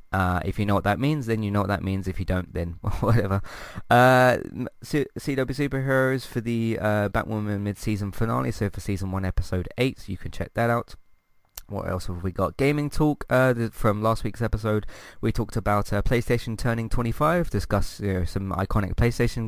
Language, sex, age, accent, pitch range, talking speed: English, male, 20-39, British, 95-115 Hz, 190 wpm